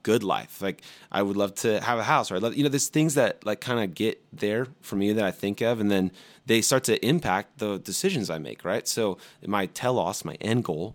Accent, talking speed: American, 240 wpm